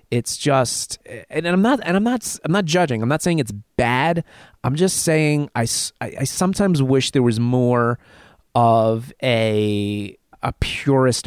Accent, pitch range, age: American, 110-150 Hz, 30-49